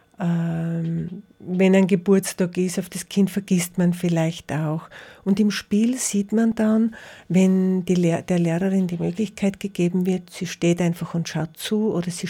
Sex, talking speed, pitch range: female, 165 wpm, 175-210 Hz